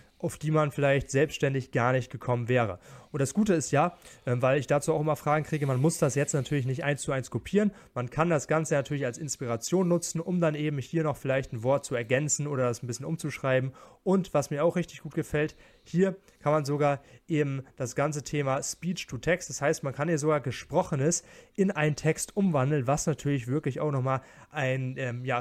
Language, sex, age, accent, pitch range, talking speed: German, male, 30-49, German, 130-160 Hz, 210 wpm